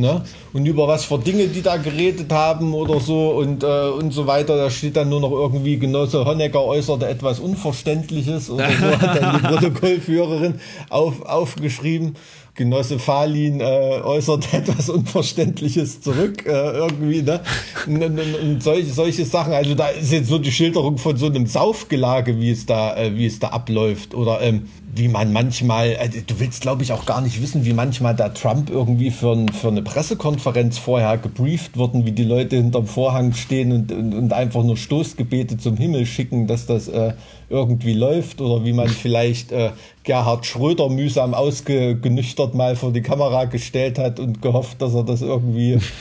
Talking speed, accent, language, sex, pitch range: 180 wpm, German, German, male, 120-150 Hz